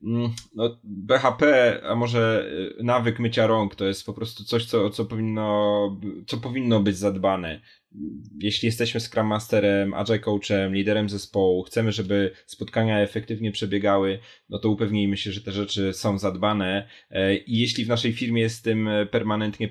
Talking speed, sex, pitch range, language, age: 145 wpm, male, 100-110 Hz, Polish, 20-39